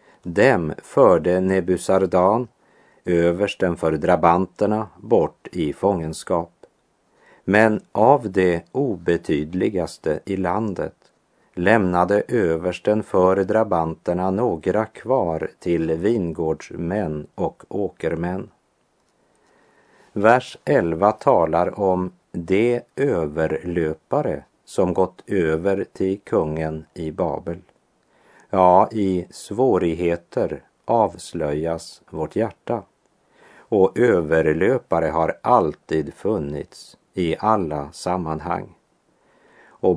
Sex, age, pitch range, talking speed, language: male, 50-69, 85-100 Hz, 80 wpm, Swedish